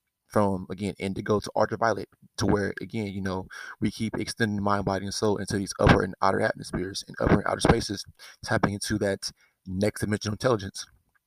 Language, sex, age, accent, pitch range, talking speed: English, male, 20-39, American, 95-110 Hz, 180 wpm